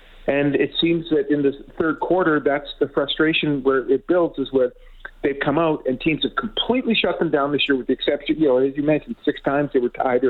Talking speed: 240 wpm